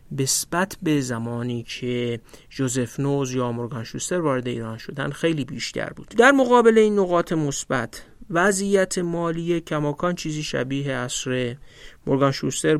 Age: 50-69